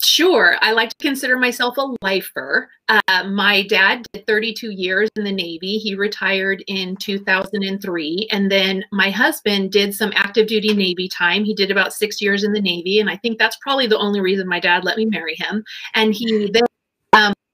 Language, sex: English, female